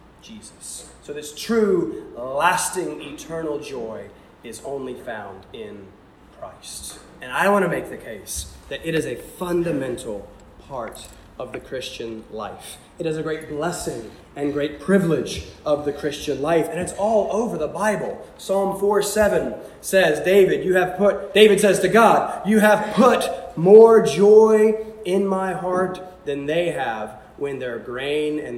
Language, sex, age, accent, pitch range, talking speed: English, male, 20-39, American, 155-215 Hz, 155 wpm